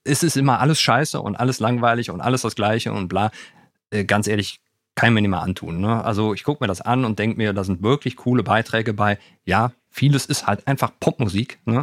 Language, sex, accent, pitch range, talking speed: German, male, German, 95-120 Hz, 220 wpm